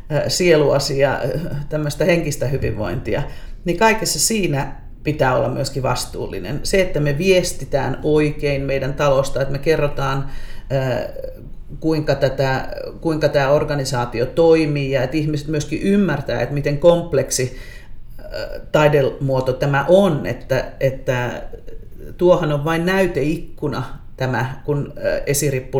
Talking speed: 110 wpm